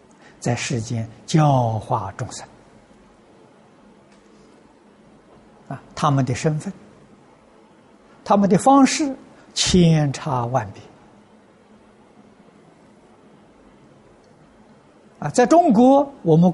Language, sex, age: Chinese, male, 60-79